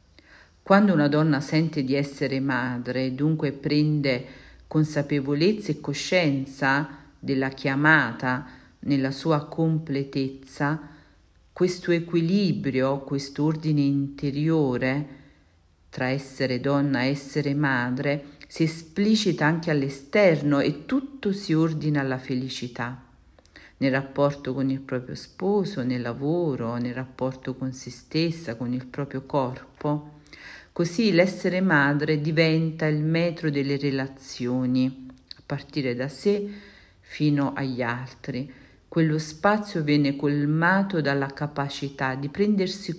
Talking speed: 110 wpm